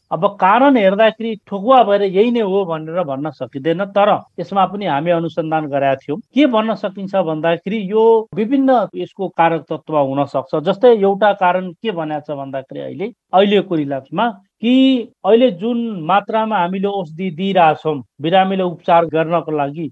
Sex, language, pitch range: male, English, 155-205 Hz